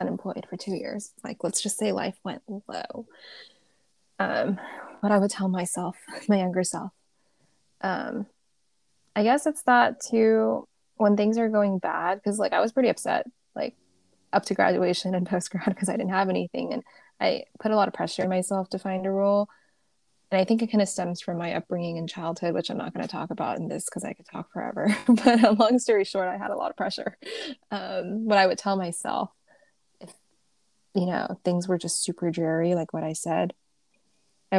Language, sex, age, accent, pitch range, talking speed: English, female, 20-39, American, 180-220 Hz, 200 wpm